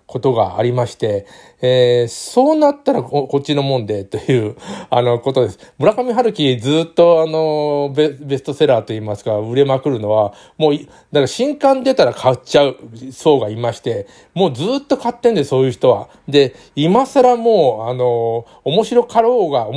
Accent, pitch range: native, 120-175 Hz